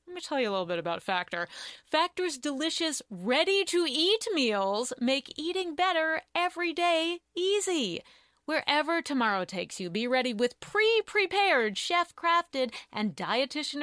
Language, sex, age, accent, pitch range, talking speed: English, female, 30-49, American, 255-365 Hz, 130 wpm